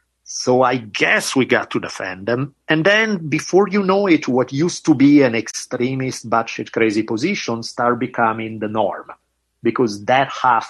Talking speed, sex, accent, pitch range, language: 170 wpm, male, Italian, 110-140 Hz, English